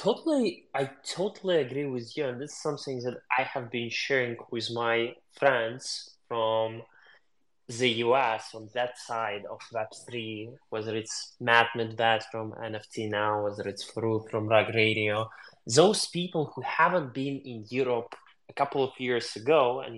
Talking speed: 155 wpm